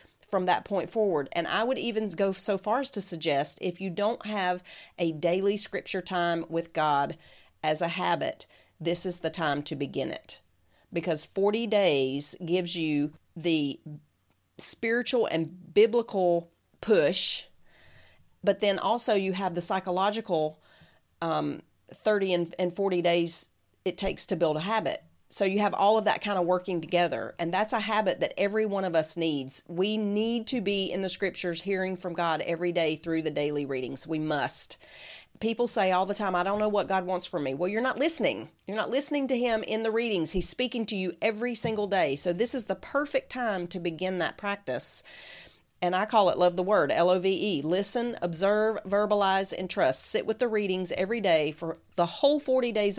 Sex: female